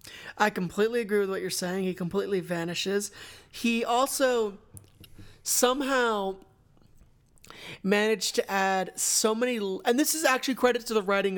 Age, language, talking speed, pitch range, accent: 30-49, English, 135 wpm, 185-235 Hz, American